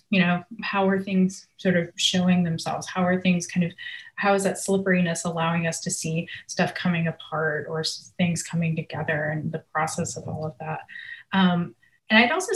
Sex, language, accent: female, English, American